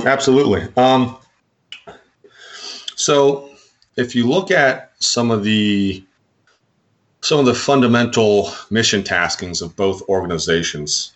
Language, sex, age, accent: English, male, 30-49, American